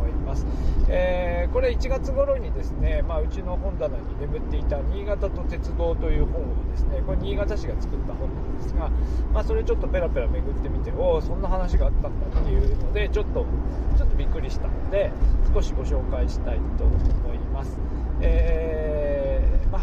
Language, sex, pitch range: Japanese, male, 65-85 Hz